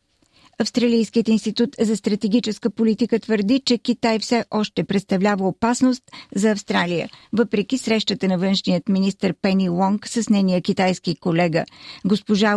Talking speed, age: 125 wpm, 50-69